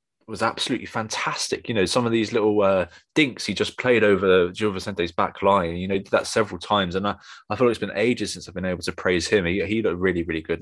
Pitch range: 95-125 Hz